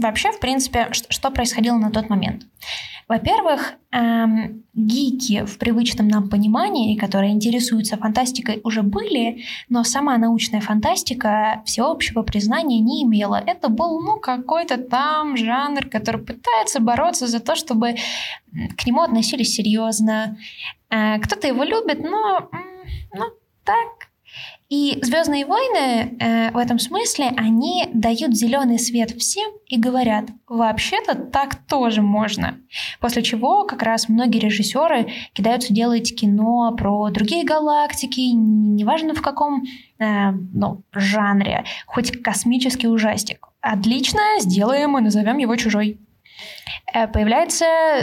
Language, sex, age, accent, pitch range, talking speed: Russian, female, 10-29, native, 215-260 Hz, 120 wpm